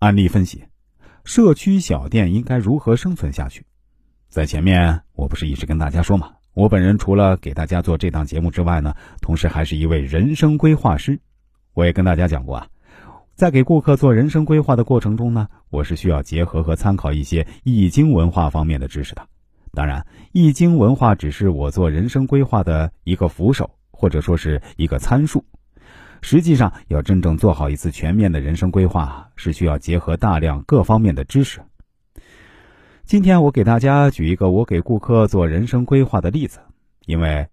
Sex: male